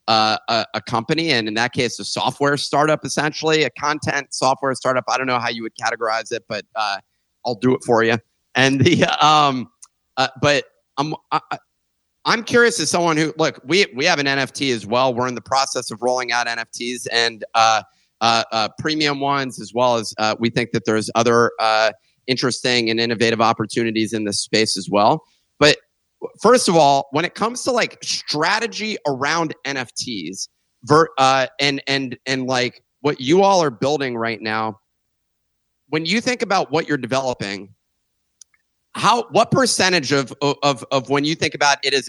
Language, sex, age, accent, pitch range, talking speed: English, male, 30-49, American, 120-155 Hz, 180 wpm